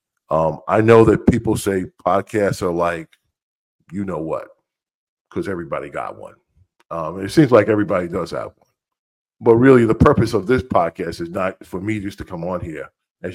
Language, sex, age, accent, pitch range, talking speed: English, male, 50-69, American, 95-115 Hz, 185 wpm